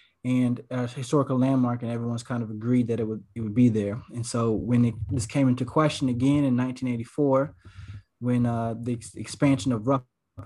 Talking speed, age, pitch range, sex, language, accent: 200 wpm, 20-39, 115-130 Hz, male, English, American